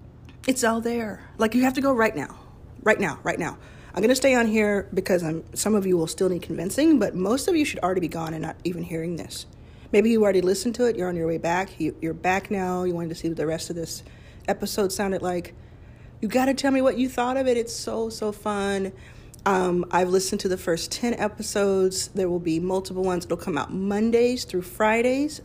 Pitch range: 175-220 Hz